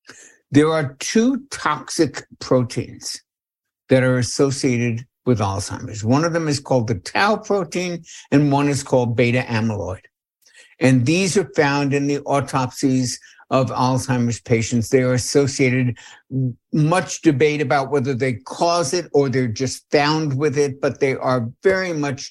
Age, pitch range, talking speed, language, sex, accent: 60-79, 120-150 Hz, 150 wpm, English, male, American